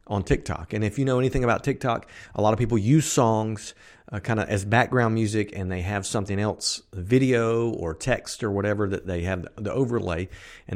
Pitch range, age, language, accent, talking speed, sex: 95-120 Hz, 50-69, English, American, 200 wpm, male